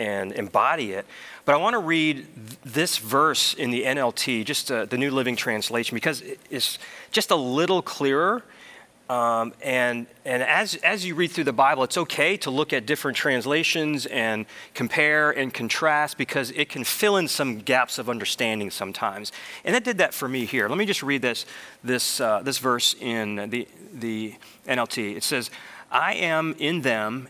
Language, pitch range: English, 120-160 Hz